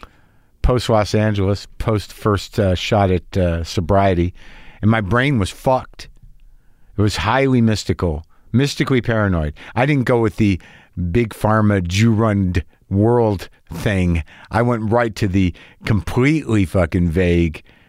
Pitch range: 90-115 Hz